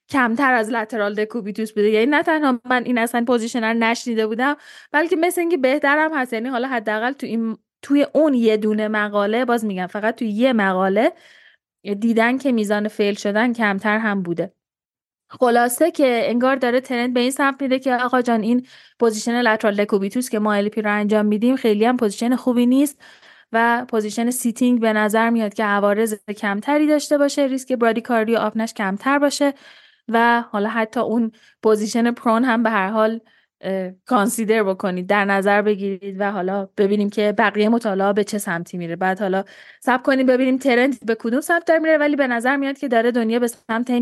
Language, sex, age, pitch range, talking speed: Persian, female, 10-29, 210-250 Hz, 175 wpm